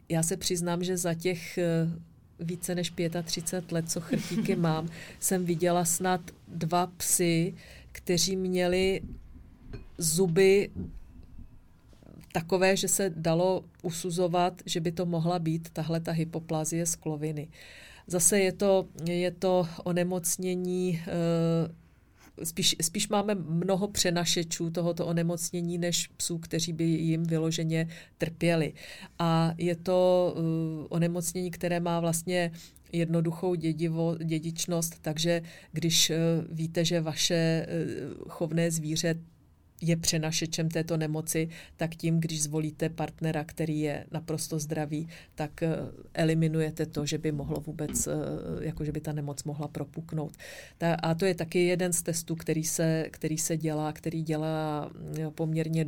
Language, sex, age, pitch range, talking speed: Czech, female, 40-59, 160-175 Hz, 120 wpm